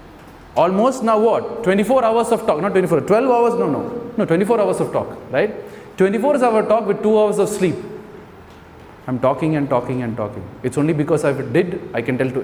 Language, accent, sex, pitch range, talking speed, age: English, Indian, male, 130-185 Hz, 205 wpm, 20-39